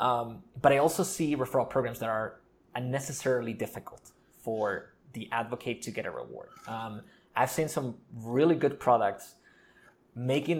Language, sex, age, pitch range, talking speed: English, male, 20-39, 110-135 Hz, 145 wpm